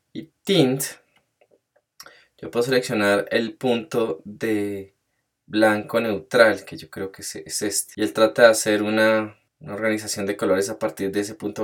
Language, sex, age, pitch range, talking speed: English, male, 20-39, 100-130 Hz, 160 wpm